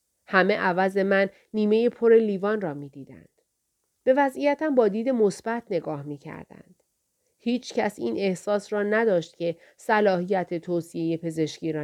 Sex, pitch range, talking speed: female, 185-235 Hz, 135 wpm